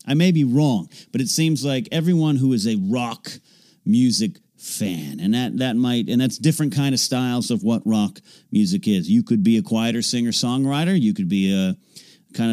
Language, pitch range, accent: English, 120-185 Hz, American